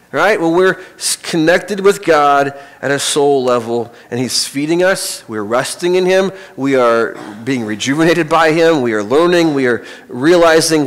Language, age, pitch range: English, 30-49, 130-170 Hz